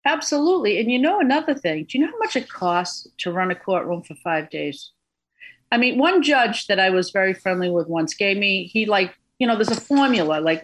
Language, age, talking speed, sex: English, 50-69, 230 wpm, female